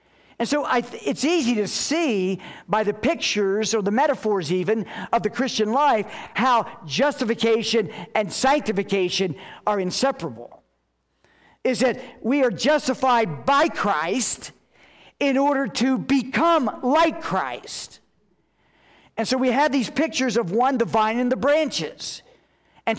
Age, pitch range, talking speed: 50-69, 185-255 Hz, 135 wpm